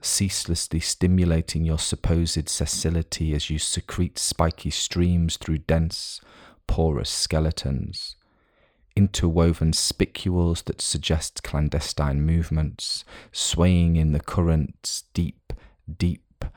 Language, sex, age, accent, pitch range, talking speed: English, male, 30-49, British, 80-90 Hz, 95 wpm